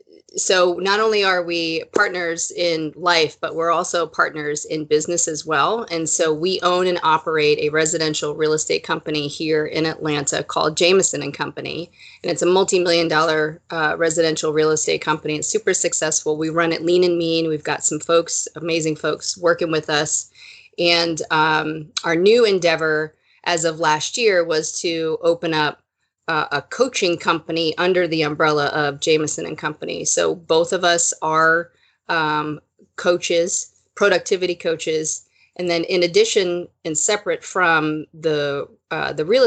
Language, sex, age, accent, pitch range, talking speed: English, female, 30-49, American, 155-175 Hz, 160 wpm